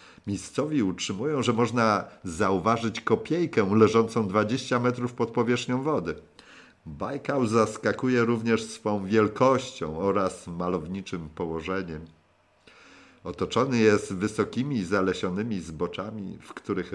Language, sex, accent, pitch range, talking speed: Polish, male, native, 90-115 Hz, 95 wpm